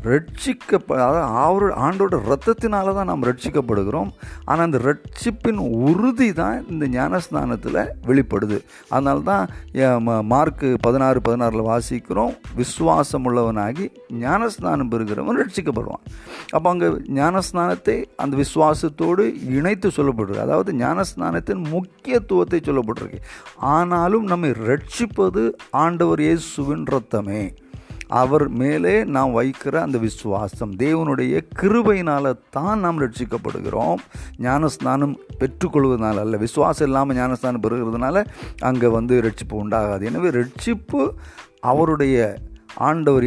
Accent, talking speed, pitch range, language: native, 60 wpm, 115-160 Hz, Hindi